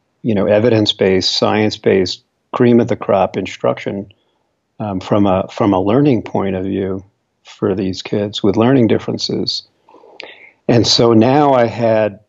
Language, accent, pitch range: English, American, 100-120 Hz